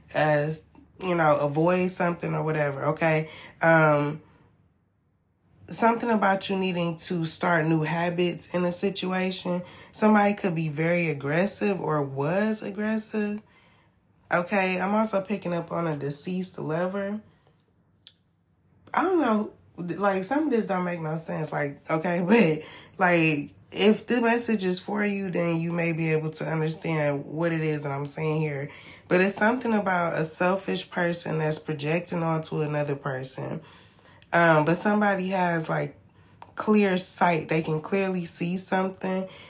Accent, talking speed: American, 145 wpm